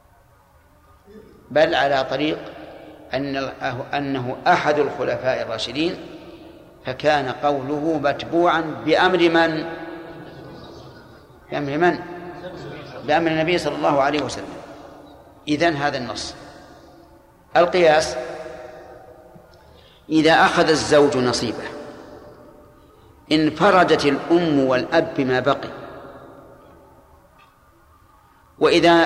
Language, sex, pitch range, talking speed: Arabic, male, 140-170 Hz, 75 wpm